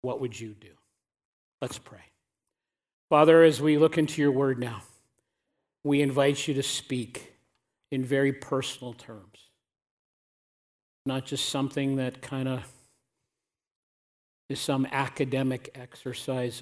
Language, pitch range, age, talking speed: English, 135-170 Hz, 50-69, 120 wpm